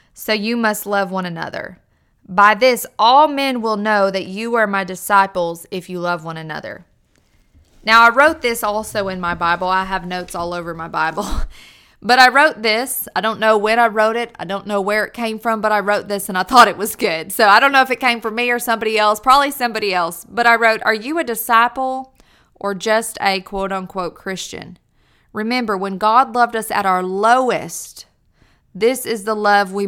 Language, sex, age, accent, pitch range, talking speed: English, female, 20-39, American, 185-230 Hz, 210 wpm